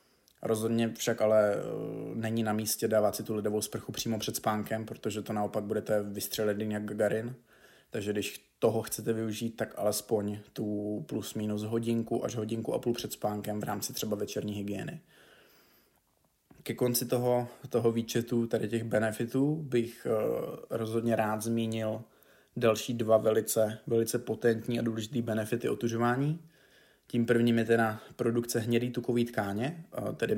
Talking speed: 145 wpm